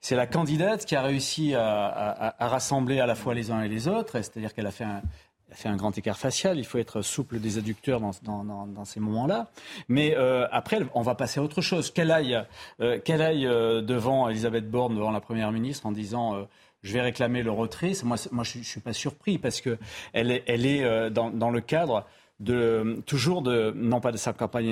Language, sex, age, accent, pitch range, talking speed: French, male, 40-59, French, 110-140 Hz, 240 wpm